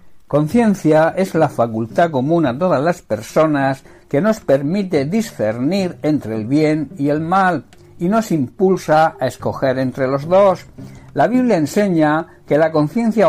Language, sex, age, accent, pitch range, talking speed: Spanish, male, 60-79, Spanish, 135-180 Hz, 150 wpm